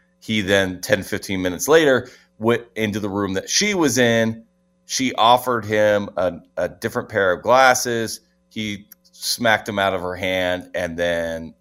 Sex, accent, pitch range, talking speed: male, American, 85-110 Hz, 165 wpm